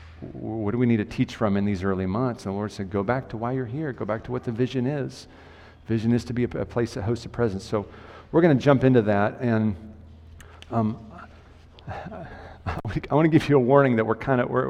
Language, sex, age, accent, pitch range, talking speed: English, male, 40-59, American, 100-120 Hz, 250 wpm